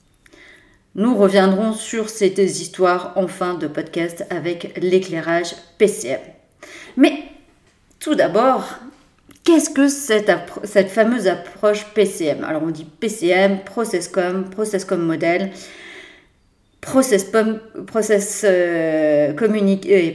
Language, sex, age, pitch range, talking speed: French, female, 40-59, 185-260 Hz, 95 wpm